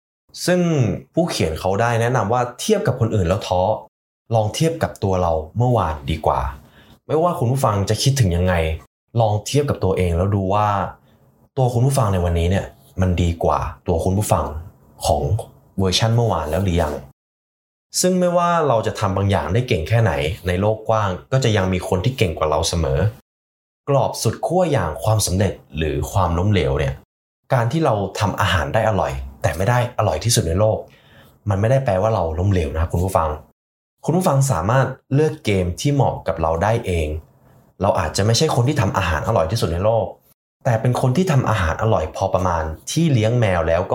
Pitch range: 90-120 Hz